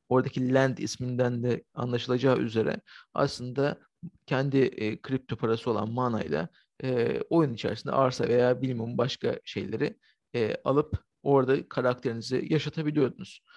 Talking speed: 115 wpm